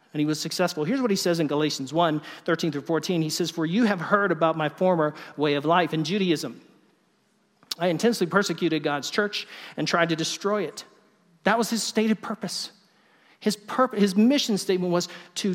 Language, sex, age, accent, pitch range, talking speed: English, male, 40-59, American, 155-200 Hz, 195 wpm